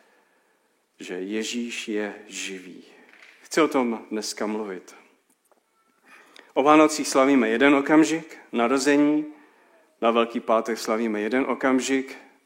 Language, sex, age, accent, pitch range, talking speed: Czech, male, 40-59, native, 110-145 Hz, 100 wpm